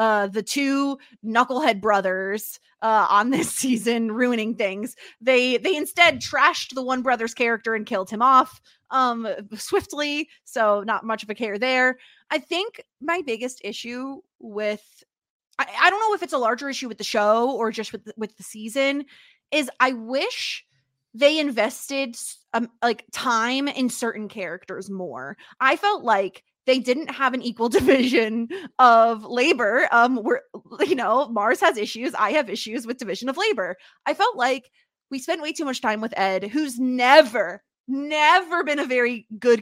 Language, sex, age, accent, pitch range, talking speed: English, female, 20-39, American, 220-300 Hz, 170 wpm